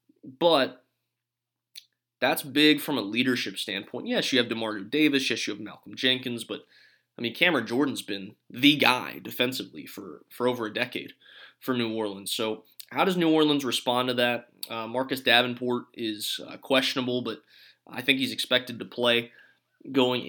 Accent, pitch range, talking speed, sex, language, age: American, 115-135 Hz, 165 wpm, male, English, 20-39